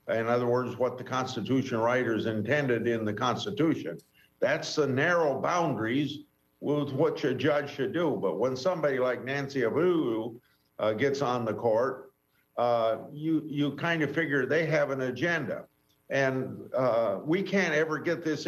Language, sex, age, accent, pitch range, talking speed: English, male, 50-69, American, 130-150 Hz, 160 wpm